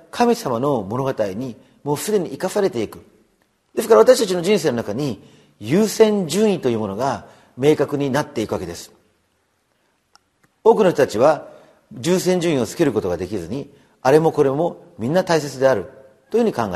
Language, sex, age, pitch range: Japanese, male, 40-59, 105-175 Hz